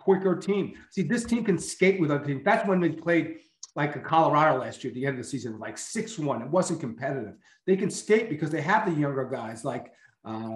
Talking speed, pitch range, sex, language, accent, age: 235 wpm, 140-170 Hz, male, English, American, 40-59